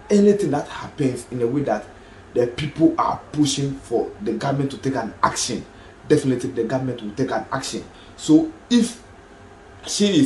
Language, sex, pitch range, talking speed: English, male, 120-165 Hz, 170 wpm